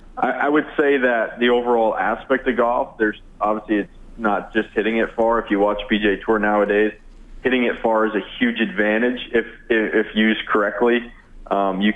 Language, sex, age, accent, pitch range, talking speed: English, male, 20-39, American, 100-115 Hz, 180 wpm